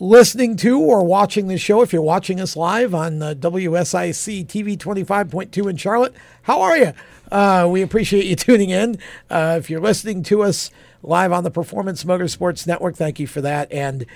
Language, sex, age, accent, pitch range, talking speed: English, male, 50-69, American, 145-190 Hz, 185 wpm